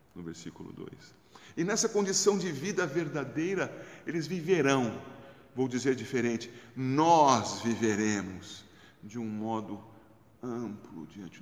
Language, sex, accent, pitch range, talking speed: Portuguese, male, Brazilian, 110-180 Hz, 110 wpm